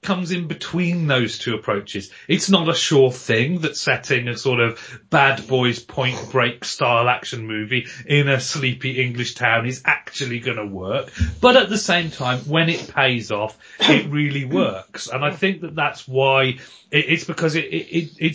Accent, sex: British, male